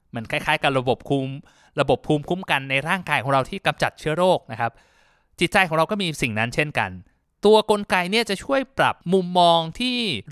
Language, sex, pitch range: Thai, male, 140-195 Hz